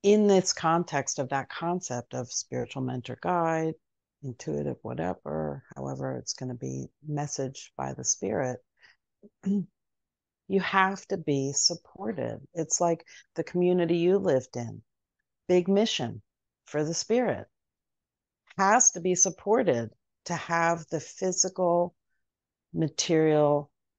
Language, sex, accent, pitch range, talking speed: English, female, American, 130-175 Hz, 120 wpm